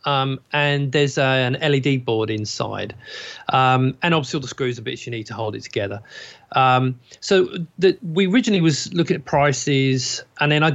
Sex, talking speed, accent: male, 180 wpm, British